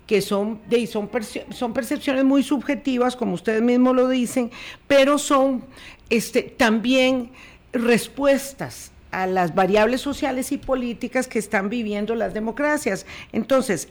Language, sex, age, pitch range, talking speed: Spanish, female, 50-69, 205-255 Hz, 115 wpm